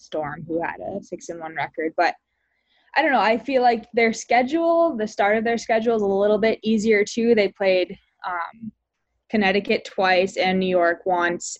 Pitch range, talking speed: 175-215 Hz, 190 wpm